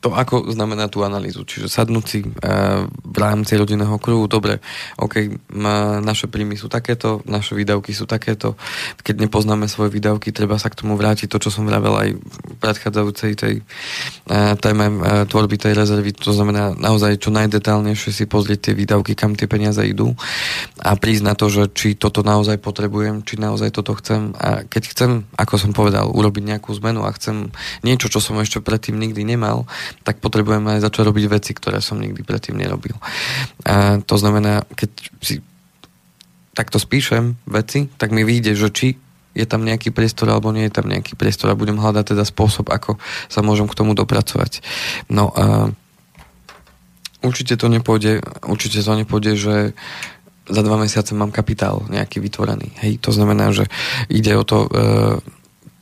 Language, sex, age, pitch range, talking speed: Slovak, male, 20-39, 105-110 Hz, 170 wpm